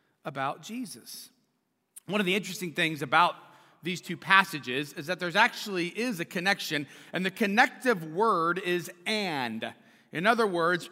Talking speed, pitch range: 150 wpm, 170-235 Hz